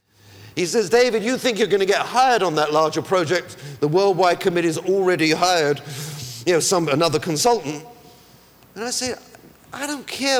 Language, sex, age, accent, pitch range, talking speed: English, male, 50-69, British, 150-225 Hz, 165 wpm